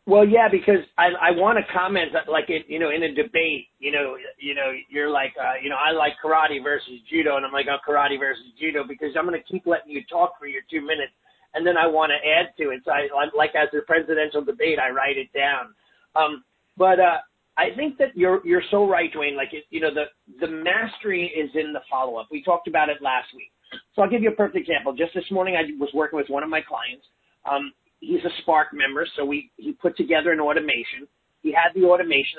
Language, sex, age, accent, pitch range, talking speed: English, male, 40-59, American, 145-180 Hz, 245 wpm